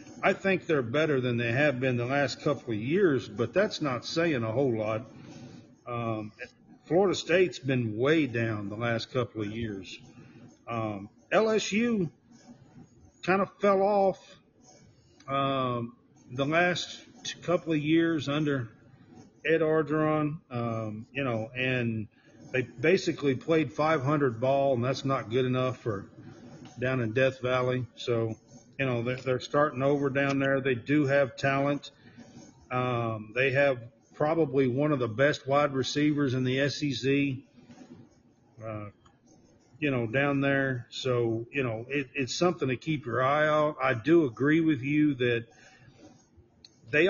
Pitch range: 120-150 Hz